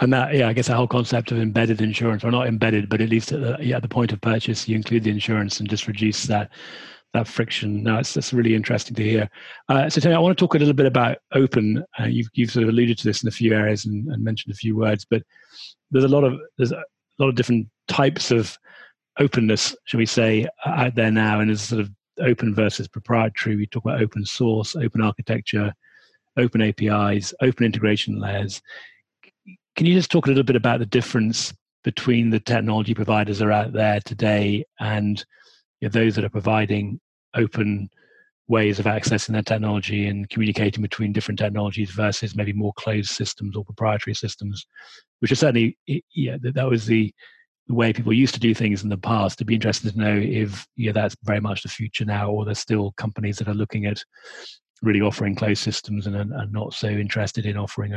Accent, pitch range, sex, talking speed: British, 105-120 Hz, male, 210 wpm